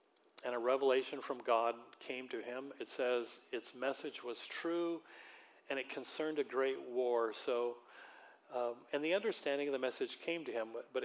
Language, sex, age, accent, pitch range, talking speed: English, male, 40-59, American, 125-170 Hz, 175 wpm